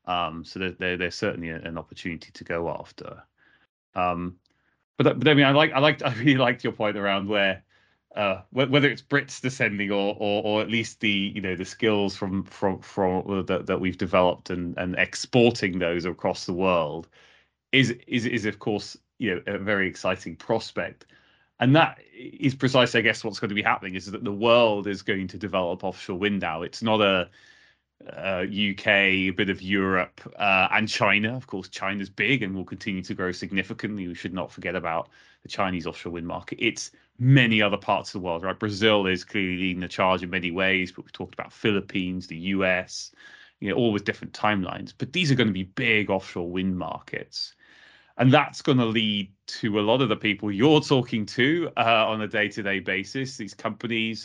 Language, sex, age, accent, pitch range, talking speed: English, male, 20-39, British, 95-115 Hz, 200 wpm